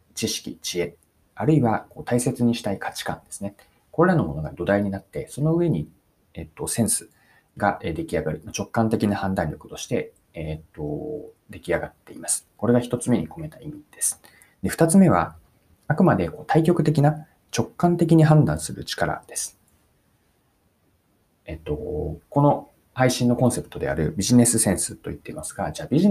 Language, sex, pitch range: Japanese, male, 95-150 Hz